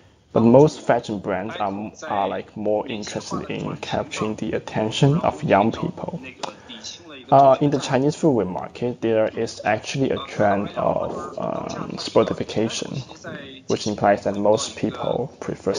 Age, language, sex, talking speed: 20-39, English, male, 135 wpm